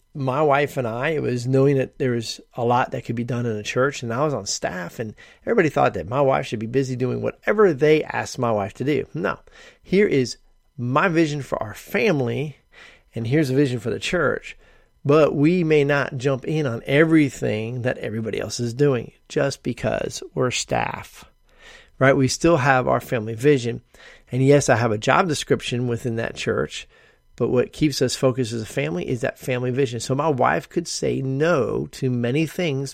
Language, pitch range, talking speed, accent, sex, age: English, 120-145 Hz, 200 wpm, American, male, 40-59